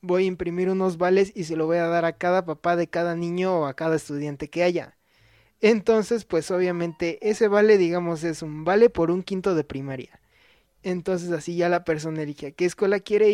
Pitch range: 150-185 Hz